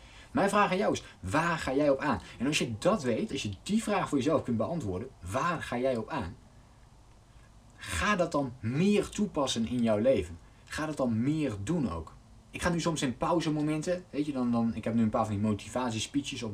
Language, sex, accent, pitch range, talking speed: Dutch, male, Dutch, 110-150 Hz, 220 wpm